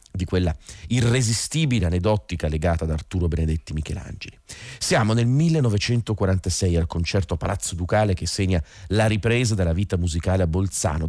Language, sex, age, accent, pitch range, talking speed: Italian, male, 40-59, native, 85-110 Hz, 135 wpm